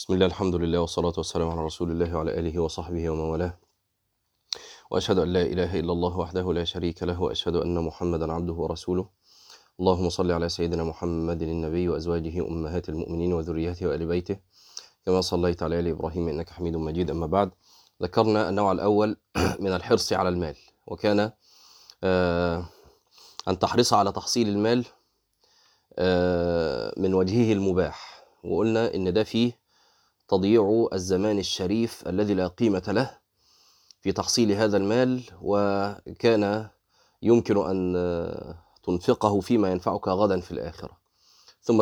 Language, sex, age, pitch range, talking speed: Arabic, male, 30-49, 85-105 Hz, 130 wpm